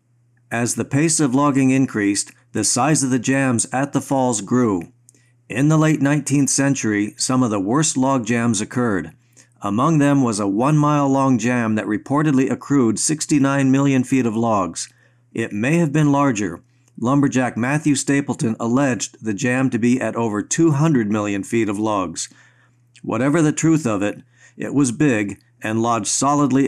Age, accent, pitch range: 50-69, American, 115-140 Hz